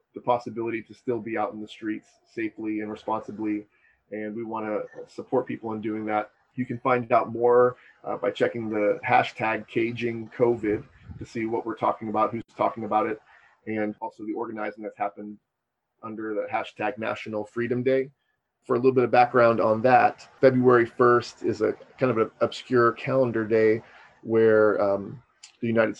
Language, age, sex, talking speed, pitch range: English, 30-49, male, 180 wpm, 110-120 Hz